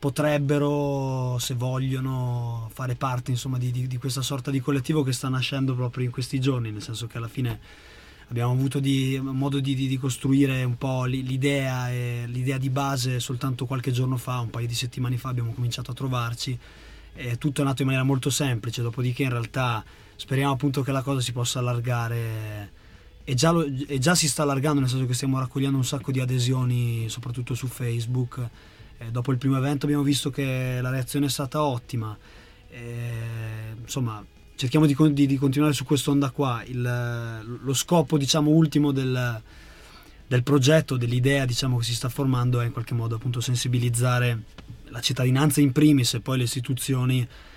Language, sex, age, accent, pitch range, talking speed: Italian, male, 20-39, native, 120-135 Hz, 180 wpm